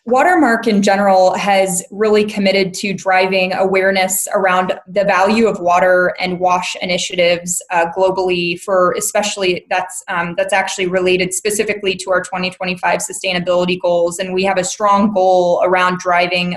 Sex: female